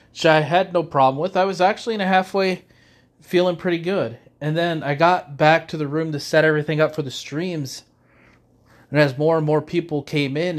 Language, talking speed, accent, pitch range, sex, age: English, 210 wpm, American, 125-155 Hz, male, 30-49